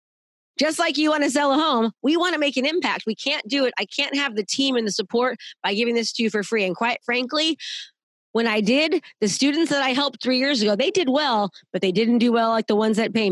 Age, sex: 30-49, female